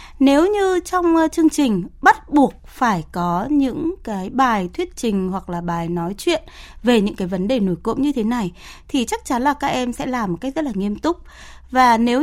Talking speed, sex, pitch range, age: 220 wpm, female, 220-320 Hz, 20-39